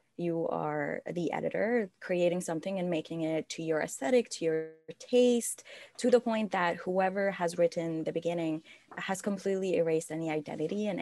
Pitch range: 165-205 Hz